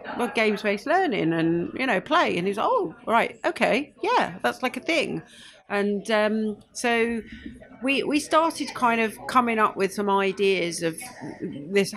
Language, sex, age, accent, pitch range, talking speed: English, female, 40-59, British, 175-220 Hz, 160 wpm